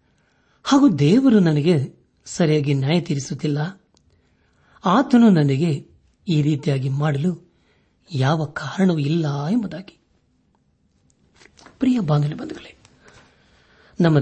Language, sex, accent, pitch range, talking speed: Kannada, male, native, 145-185 Hz, 70 wpm